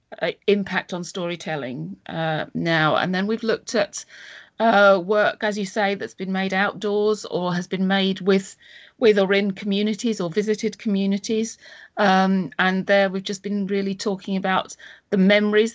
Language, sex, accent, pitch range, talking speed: English, female, British, 190-210 Hz, 165 wpm